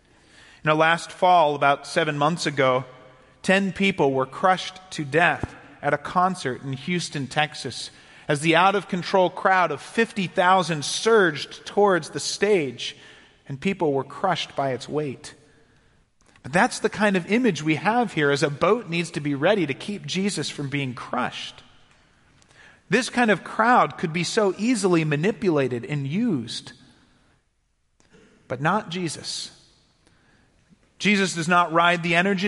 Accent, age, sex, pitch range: American, 40-59, male, 140-190 Hz